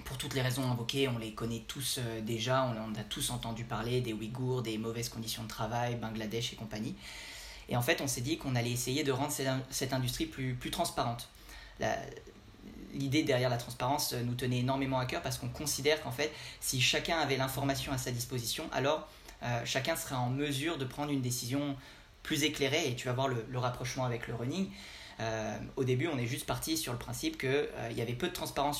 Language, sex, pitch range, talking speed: French, male, 120-140 Hz, 215 wpm